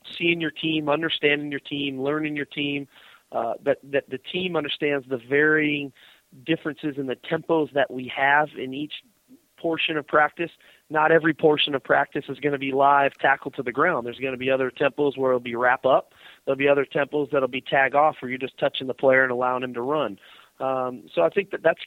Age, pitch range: 30-49, 130-150 Hz